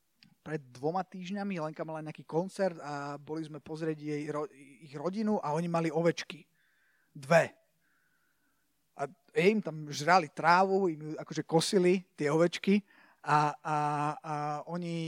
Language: Slovak